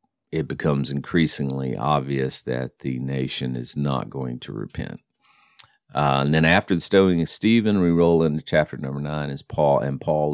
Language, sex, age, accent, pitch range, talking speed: English, male, 50-69, American, 65-80 Hz, 175 wpm